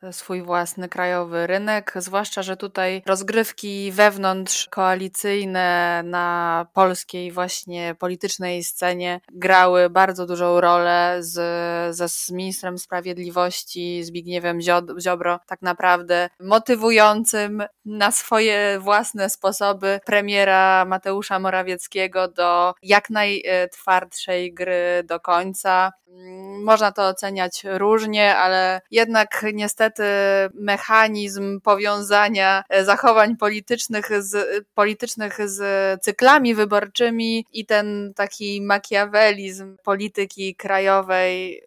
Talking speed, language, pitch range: 90 wpm, Polish, 180-210 Hz